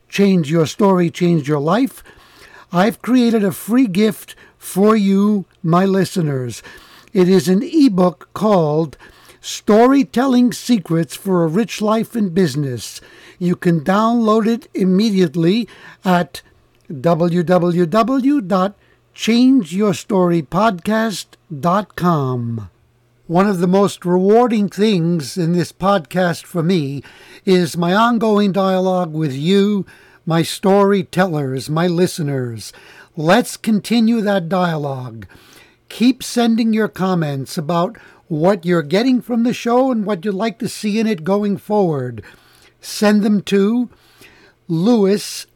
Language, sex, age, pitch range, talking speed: English, male, 60-79, 170-215 Hz, 110 wpm